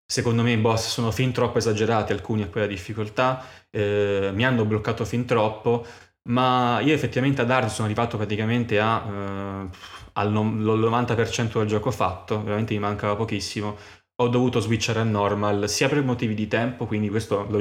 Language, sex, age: Italian, male, 20-39